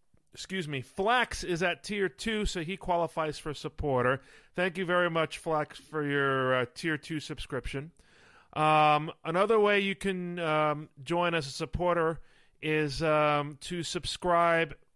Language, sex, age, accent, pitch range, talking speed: English, male, 40-59, American, 145-175 Hz, 150 wpm